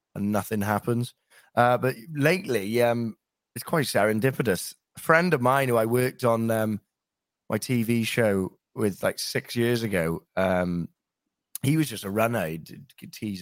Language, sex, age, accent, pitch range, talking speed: English, male, 30-49, British, 95-125 Hz, 160 wpm